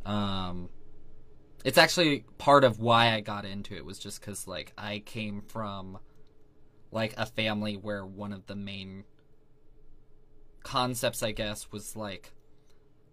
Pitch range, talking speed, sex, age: 100-125 Hz, 135 wpm, male, 20-39